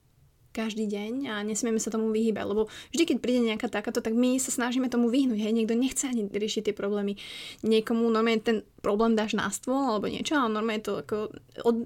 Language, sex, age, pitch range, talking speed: Slovak, female, 20-39, 205-240 Hz, 200 wpm